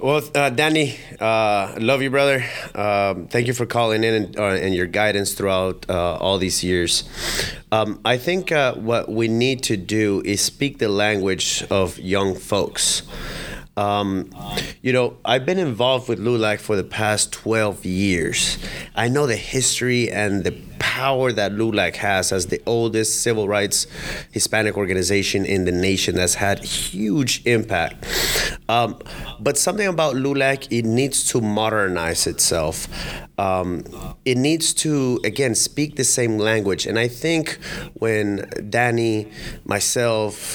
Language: English